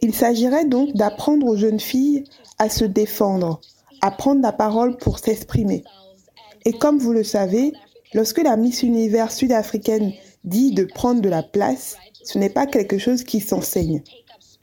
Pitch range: 205-255 Hz